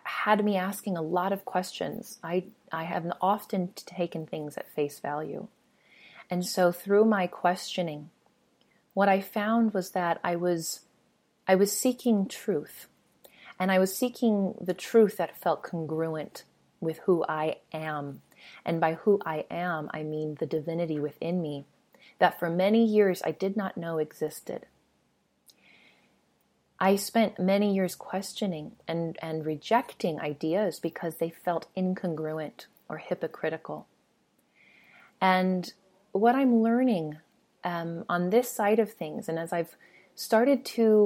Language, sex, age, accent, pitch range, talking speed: English, female, 30-49, American, 165-210 Hz, 140 wpm